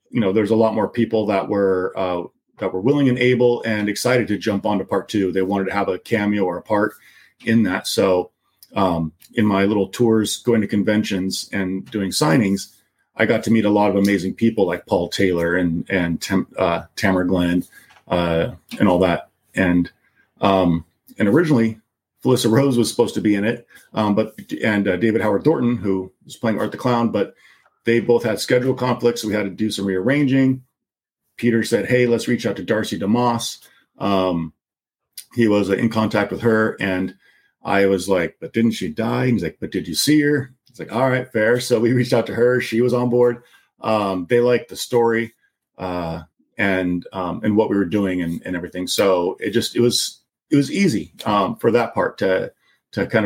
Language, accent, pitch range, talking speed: English, American, 95-120 Hz, 205 wpm